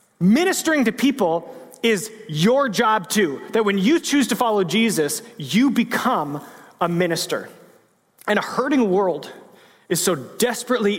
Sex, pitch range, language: male, 170-220 Hz, English